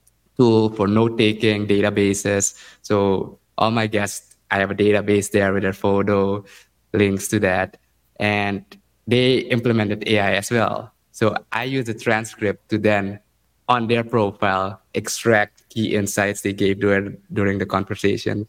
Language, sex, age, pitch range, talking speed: English, male, 20-39, 95-110 Hz, 145 wpm